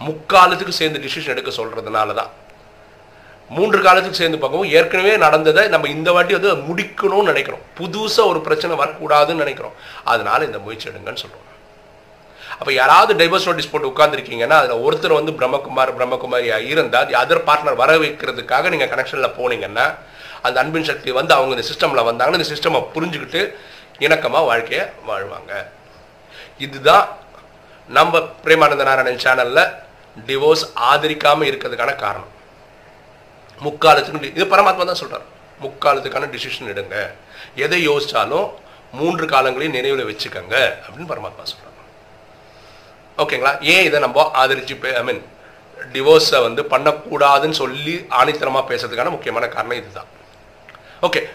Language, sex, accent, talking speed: Tamil, male, native, 50 wpm